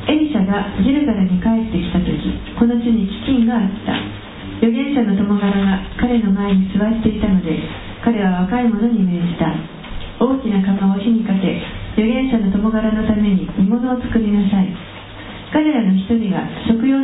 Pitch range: 190-230 Hz